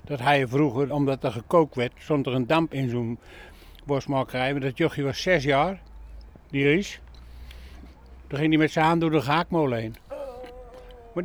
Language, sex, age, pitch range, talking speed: English, male, 60-79, 140-175 Hz, 180 wpm